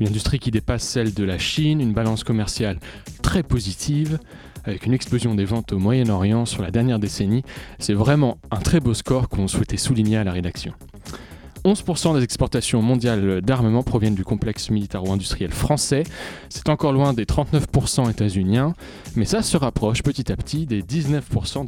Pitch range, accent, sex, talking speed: 100-130 Hz, French, male, 170 wpm